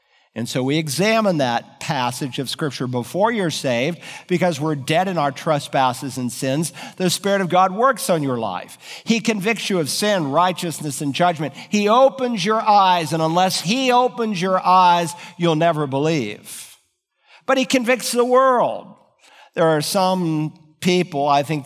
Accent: American